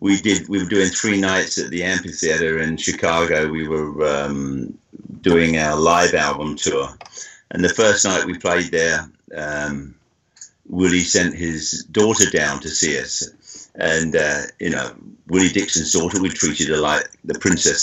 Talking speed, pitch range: 165 wpm, 75-90 Hz